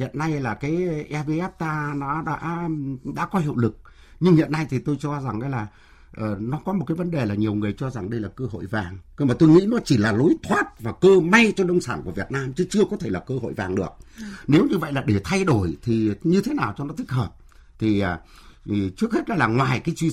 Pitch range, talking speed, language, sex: 105-165 Hz, 260 wpm, Vietnamese, male